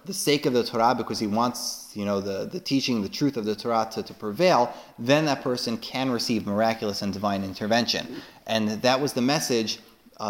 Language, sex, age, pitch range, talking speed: English, male, 30-49, 105-135 Hz, 210 wpm